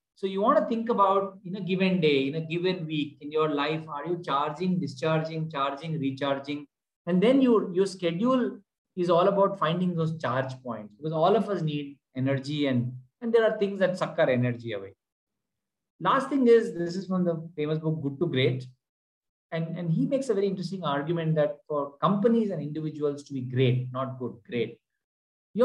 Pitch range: 135-190 Hz